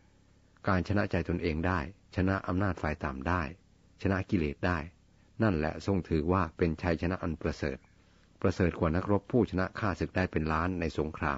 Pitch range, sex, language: 80-95 Hz, male, Thai